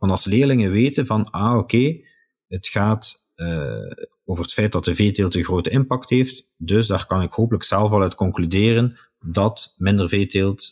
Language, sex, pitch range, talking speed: Dutch, male, 90-115 Hz, 180 wpm